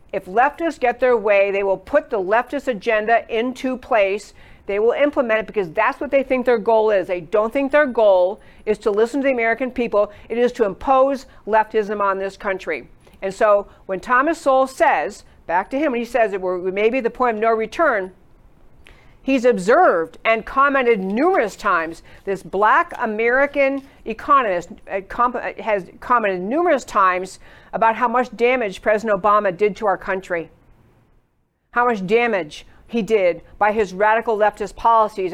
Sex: female